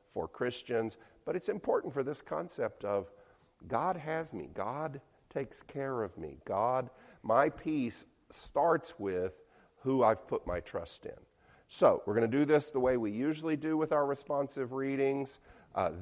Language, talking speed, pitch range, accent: English, 165 wpm, 120-175 Hz, American